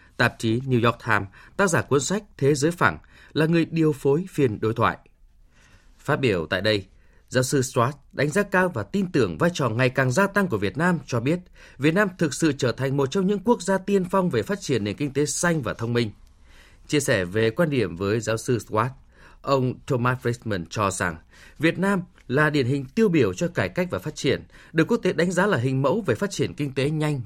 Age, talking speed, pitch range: 20-39, 235 wpm, 115-175 Hz